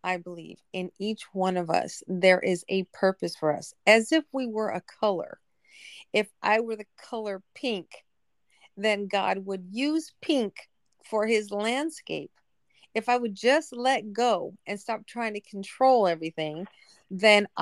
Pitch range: 190-235 Hz